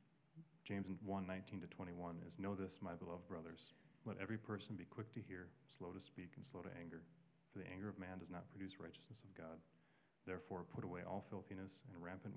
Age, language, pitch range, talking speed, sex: 30-49, English, 85-105 Hz, 210 wpm, male